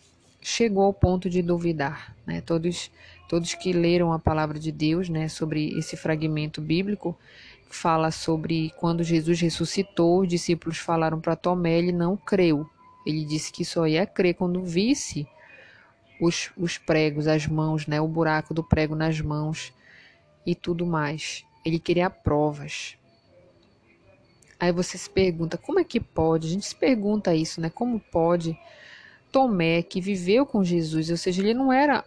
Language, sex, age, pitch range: Portuguese, female, 20-39, 160-200 Hz